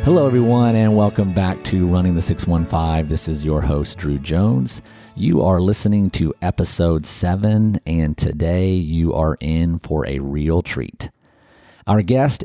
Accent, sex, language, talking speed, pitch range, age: American, male, English, 155 wpm, 80-100 Hz, 40-59